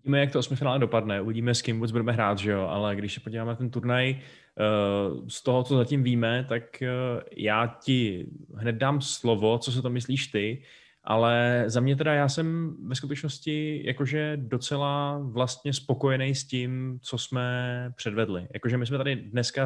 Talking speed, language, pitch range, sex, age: 175 wpm, Czech, 110-125 Hz, male, 20-39